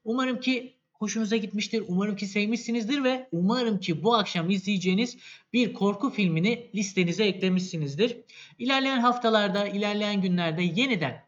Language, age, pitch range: Turkish, 50-69, 165-235 Hz